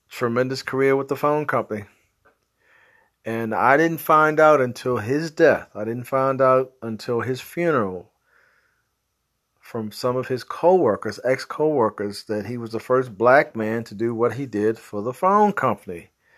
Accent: American